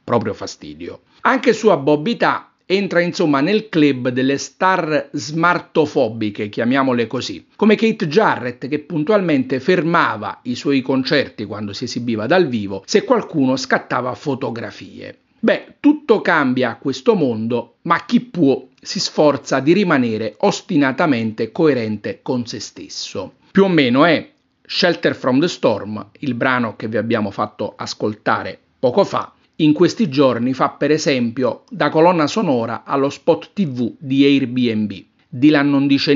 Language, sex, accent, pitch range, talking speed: Italian, male, native, 125-175 Hz, 140 wpm